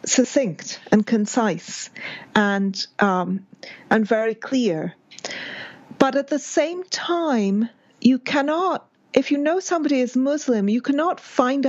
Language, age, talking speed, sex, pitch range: English, 40-59, 125 wpm, female, 220-275 Hz